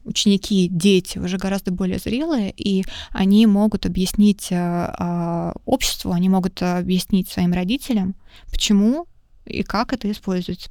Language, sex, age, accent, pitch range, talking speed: Russian, female, 20-39, native, 185-220 Hz, 120 wpm